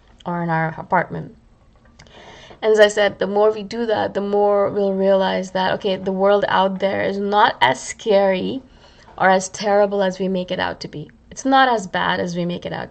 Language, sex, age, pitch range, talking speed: English, female, 20-39, 185-265 Hz, 215 wpm